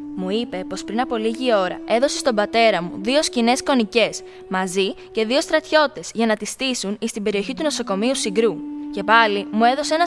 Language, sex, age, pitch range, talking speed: Greek, female, 20-39, 195-290 Hz, 195 wpm